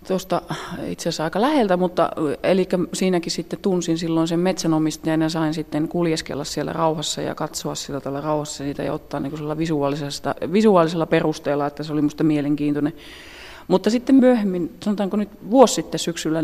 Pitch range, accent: 150-180 Hz, native